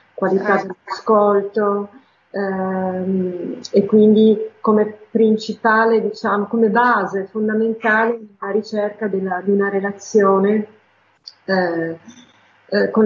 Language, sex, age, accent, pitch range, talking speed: Italian, female, 40-59, native, 190-215 Hz, 90 wpm